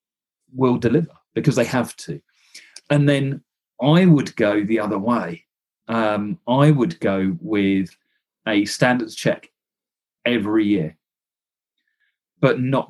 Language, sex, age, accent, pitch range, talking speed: English, male, 40-59, British, 110-150 Hz, 120 wpm